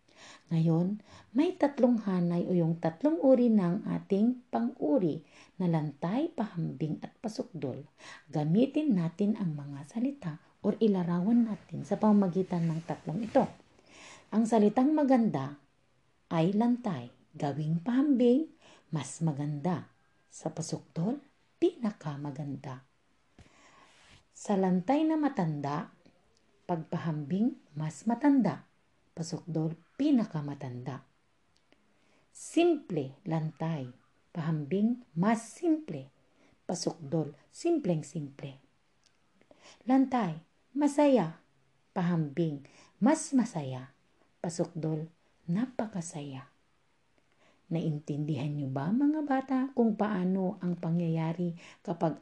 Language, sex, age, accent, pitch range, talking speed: Filipino, female, 50-69, native, 155-240 Hz, 85 wpm